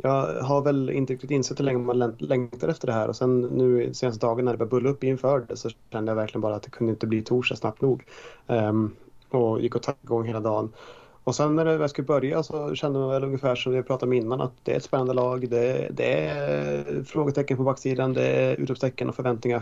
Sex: male